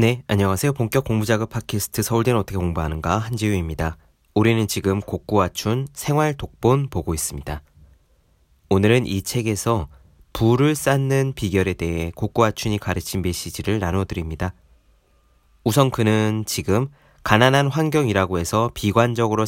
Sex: male